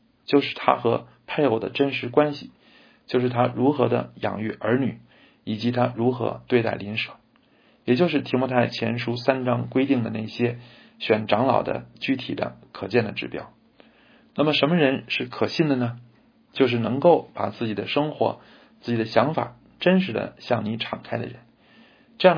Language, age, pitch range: Chinese, 50-69, 115-140 Hz